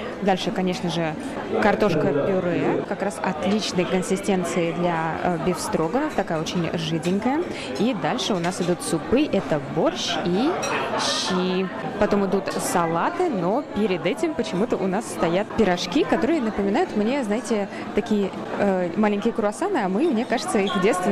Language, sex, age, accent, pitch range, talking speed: Russian, female, 20-39, native, 180-225 Hz, 140 wpm